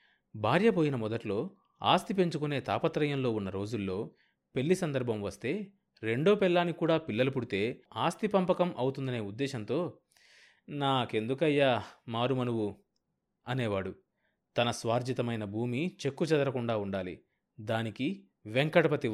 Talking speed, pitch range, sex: 95 wpm, 110-155 Hz, male